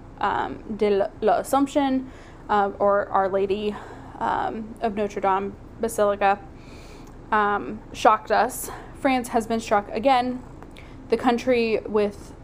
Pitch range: 200-230 Hz